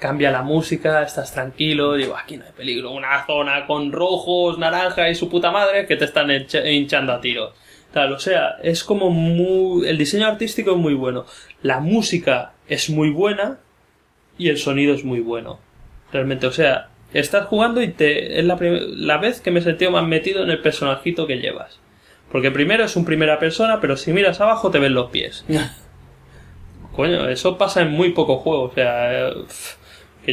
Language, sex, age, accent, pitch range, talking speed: English, male, 20-39, Spanish, 135-180 Hz, 185 wpm